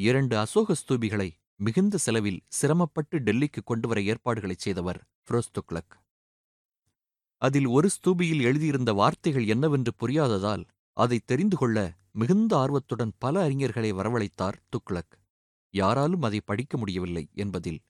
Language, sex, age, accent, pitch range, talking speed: Tamil, male, 30-49, native, 100-140 Hz, 110 wpm